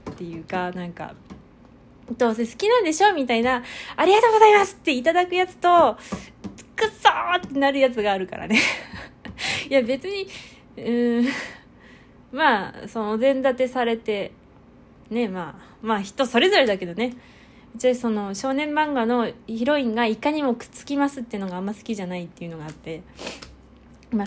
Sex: female